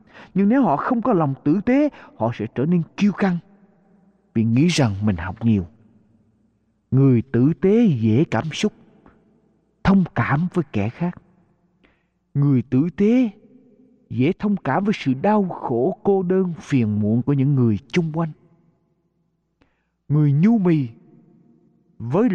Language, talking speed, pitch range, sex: Vietnamese, 145 wpm, 125-200 Hz, male